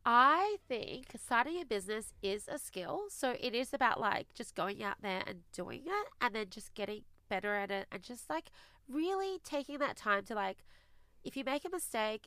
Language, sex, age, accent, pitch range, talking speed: English, female, 30-49, Australian, 200-270 Hz, 200 wpm